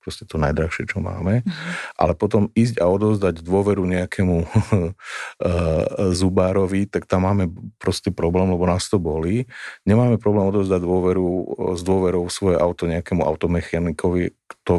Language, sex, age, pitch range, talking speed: Slovak, male, 50-69, 85-100 Hz, 130 wpm